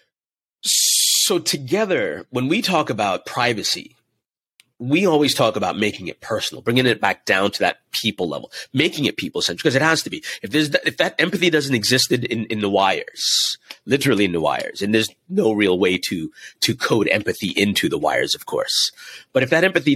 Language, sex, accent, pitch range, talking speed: English, male, American, 110-160 Hz, 195 wpm